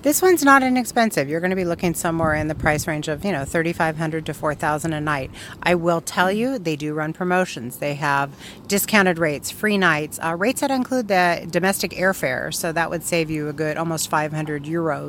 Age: 40-59